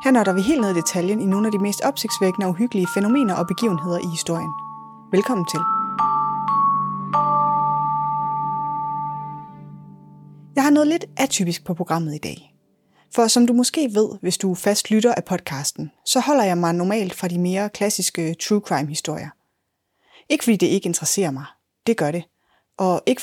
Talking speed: 165 wpm